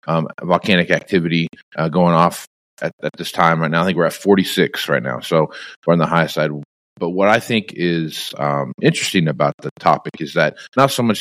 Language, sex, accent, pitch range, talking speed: English, male, American, 80-95 Hz, 215 wpm